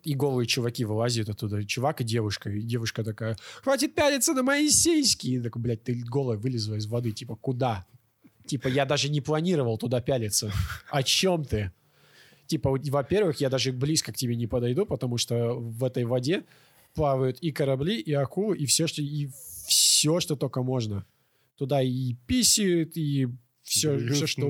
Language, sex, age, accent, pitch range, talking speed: Russian, male, 20-39, native, 115-145 Hz, 170 wpm